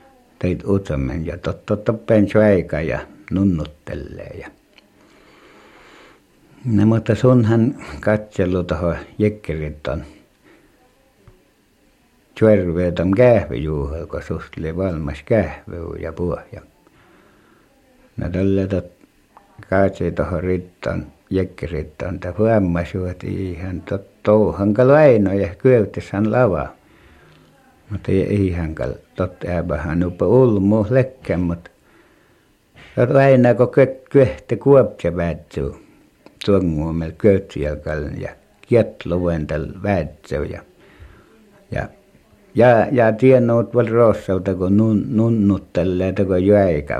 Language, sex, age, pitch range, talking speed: Finnish, male, 60-79, 85-110 Hz, 95 wpm